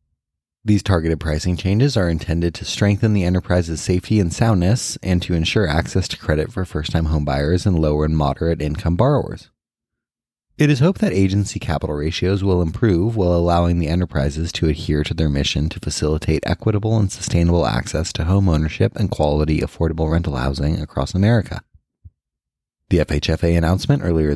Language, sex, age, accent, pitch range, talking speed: English, male, 20-39, American, 80-100 Hz, 160 wpm